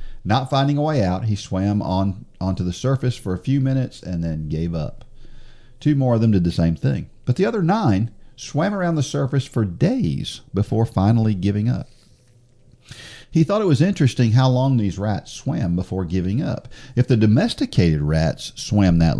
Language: English